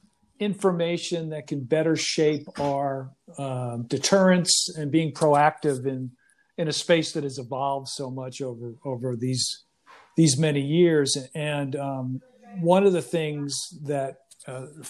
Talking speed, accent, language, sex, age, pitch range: 135 wpm, American, English, male, 50-69, 145-180 Hz